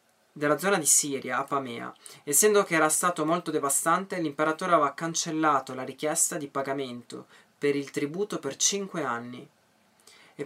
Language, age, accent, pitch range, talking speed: Italian, 20-39, native, 140-170 Hz, 145 wpm